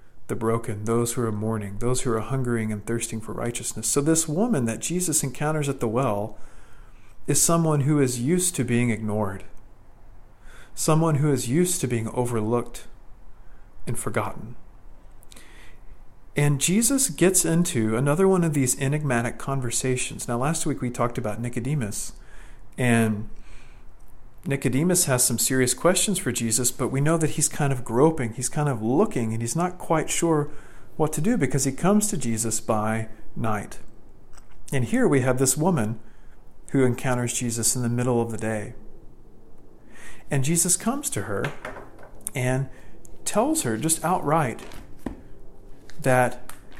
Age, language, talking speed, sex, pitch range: 40-59, English, 150 wpm, male, 110-145 Hz